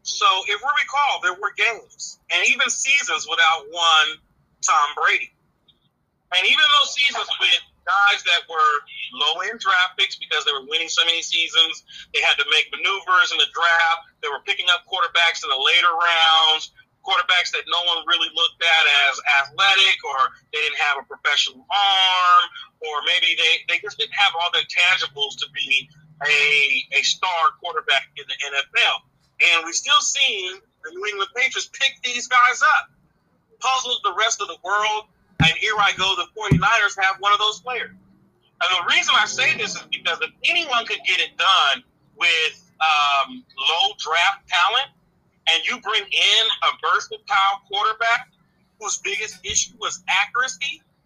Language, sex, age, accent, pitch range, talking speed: English, male, 40-59, American, 170-280 Hz, 170 wpm